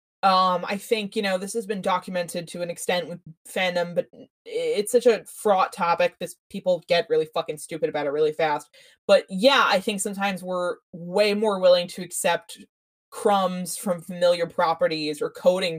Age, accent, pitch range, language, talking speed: 20-39, American, 175-250 Hz, English, 180 wpm